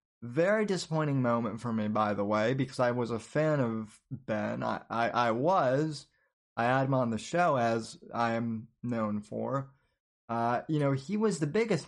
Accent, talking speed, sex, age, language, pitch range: American, 185 wpm, male, 20-39, English, 120-160 Hz